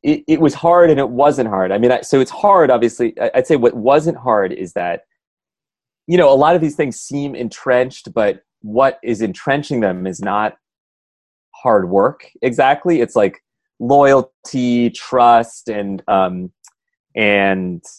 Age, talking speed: 30-49, 165 wpm